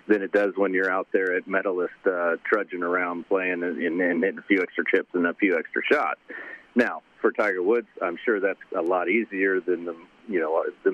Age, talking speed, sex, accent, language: 40-59, 215 wpm, male, American, English